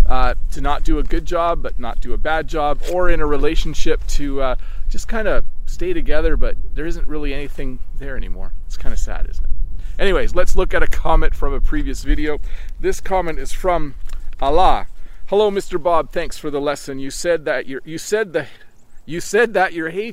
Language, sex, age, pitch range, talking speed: English, male, 40-59, 150-190 Hz, 190 wpm